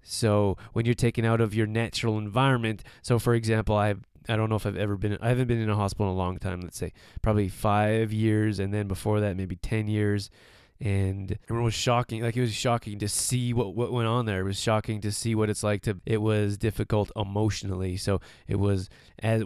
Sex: male